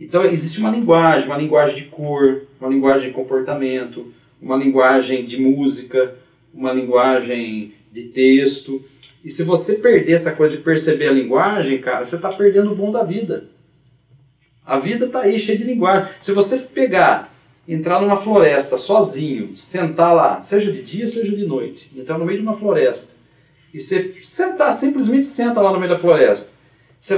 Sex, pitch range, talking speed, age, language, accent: male, 135-205 Hz, 170 wpm, 40-59, Portuguese, Brazilian